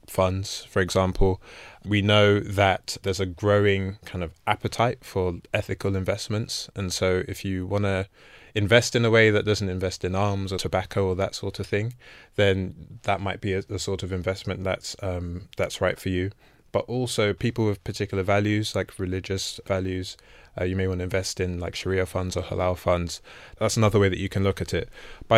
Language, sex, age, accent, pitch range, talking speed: English, male, 20-39, British, 95-110 Hz, 195 wpm